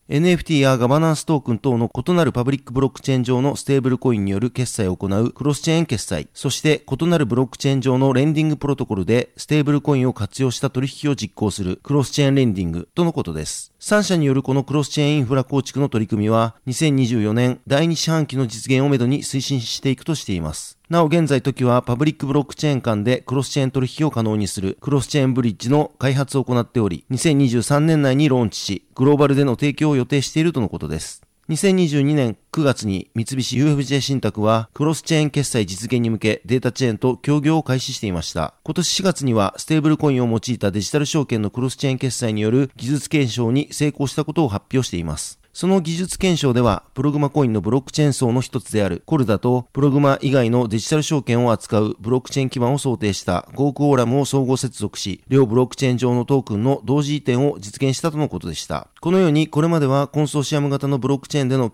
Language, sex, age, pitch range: Japanese, male, 40-59, 115-145 Hz